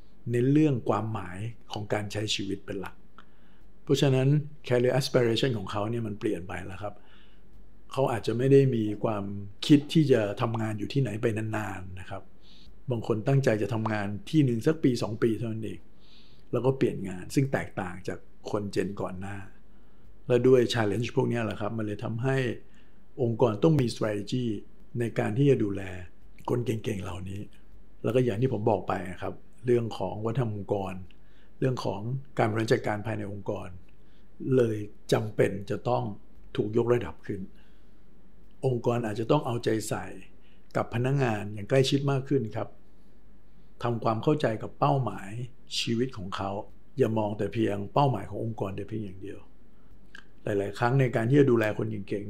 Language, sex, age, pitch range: Thai, male, 60-79, 100-130 Hz